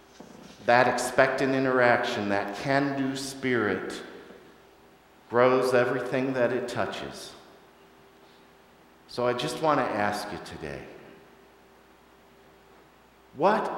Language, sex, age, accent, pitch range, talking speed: English, male, 50-69, American, 110-155 Hz, 85 wpm